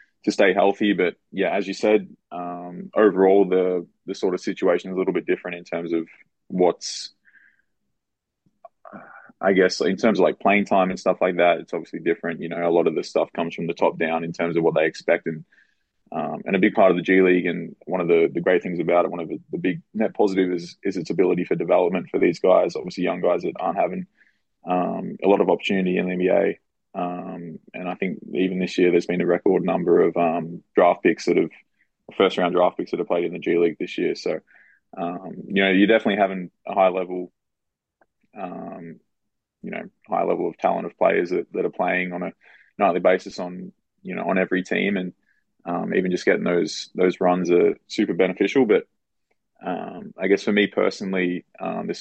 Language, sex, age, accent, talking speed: English, male, 20-39, Australian, 220 wpm